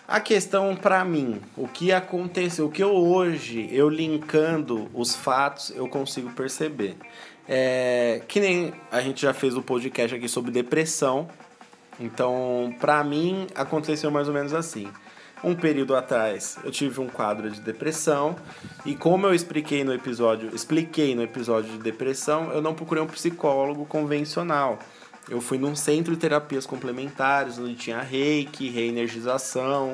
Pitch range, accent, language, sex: 130-170 Hz, Brazilian, Portuguese, male